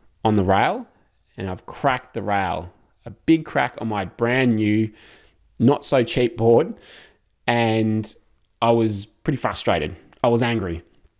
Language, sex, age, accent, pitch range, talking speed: English, male, 20-39, Australian, 100-120 Hz, 145 wpm